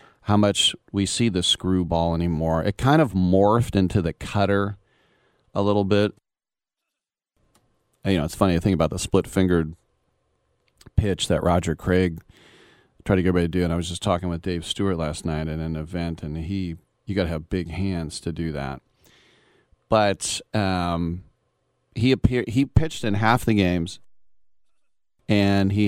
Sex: male